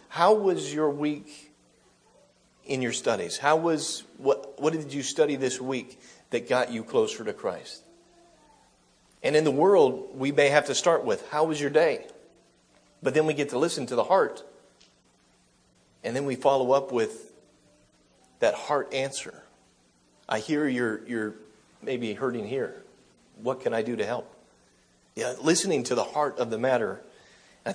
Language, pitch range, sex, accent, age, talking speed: English, 110-155 Hz, male, American, 40-59, 165 wpm